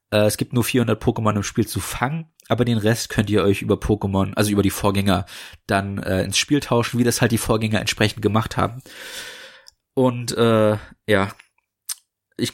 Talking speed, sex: 180 wpm, male